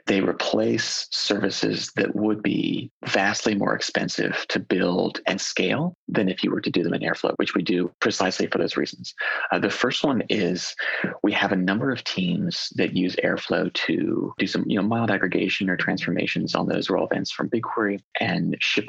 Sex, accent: male, American